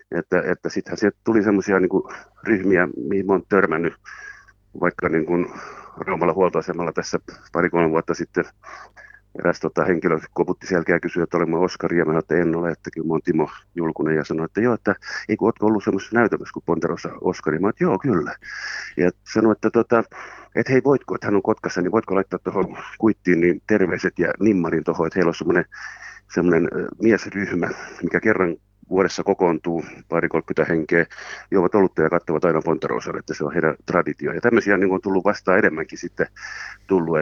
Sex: male